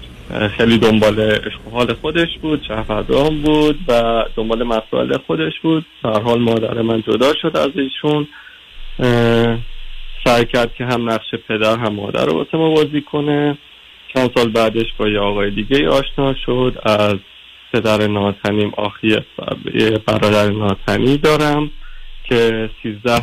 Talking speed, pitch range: 130 wpm, 110-140 Hz